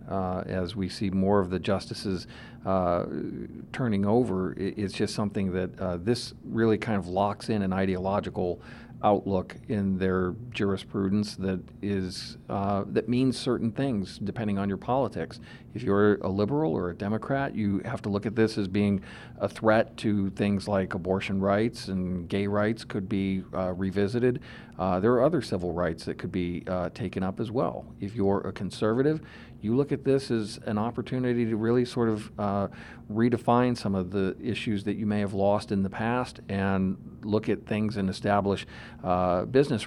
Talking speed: 180 wpm